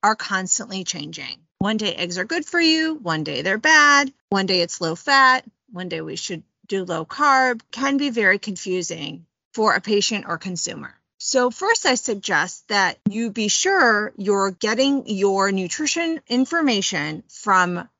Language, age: English, 30-49